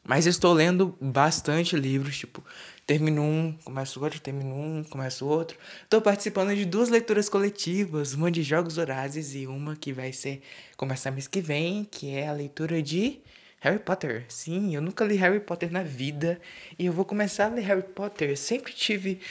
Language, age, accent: Portuguese, 20-39, Brazilian